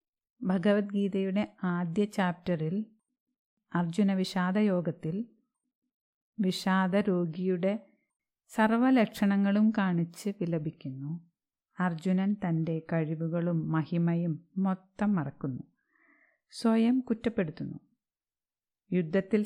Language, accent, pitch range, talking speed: Malayalam, native, 175-220 Hz, 60 wpm